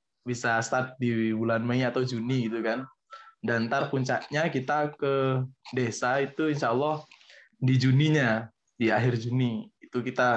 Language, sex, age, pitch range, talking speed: Indonesian, male, 20-39, 115-135 Hz, 140 wpm